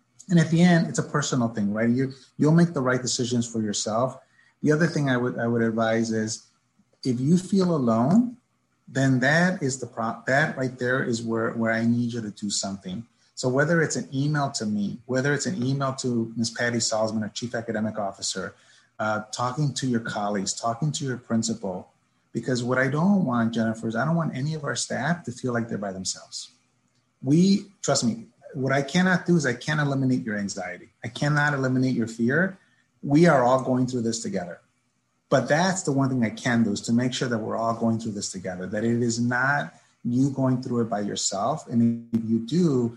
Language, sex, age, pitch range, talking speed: English, male, 30-49, 115-140 Hz, 215 wpm